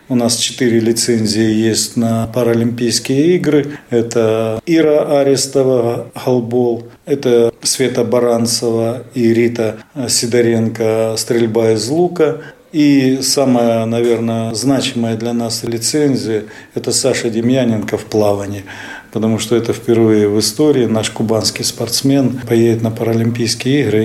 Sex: male